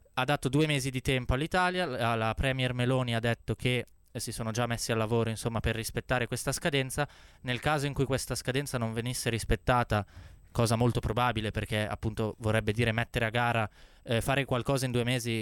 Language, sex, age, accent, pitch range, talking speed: Italian, male, 20-39, native, 115-135 Hz, 190 wpm